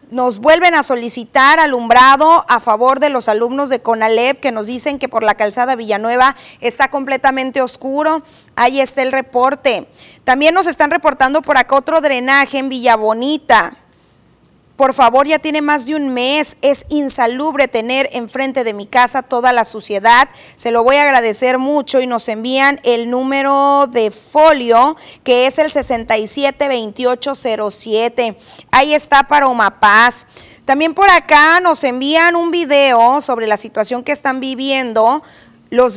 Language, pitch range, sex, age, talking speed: Spanish, 240-290 Hz, female, 30-49, 150 wpm